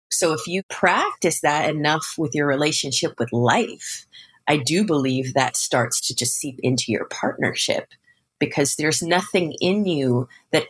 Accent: American